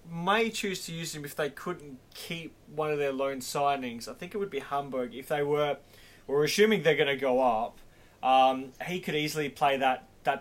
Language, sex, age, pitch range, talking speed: English, male, 20-39, 120-145 Hz, 215 wpm